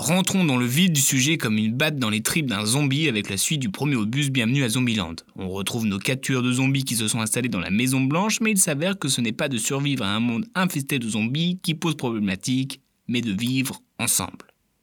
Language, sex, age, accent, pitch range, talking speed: French, male, 20-39, French, 115-155 Hz, 240 wpm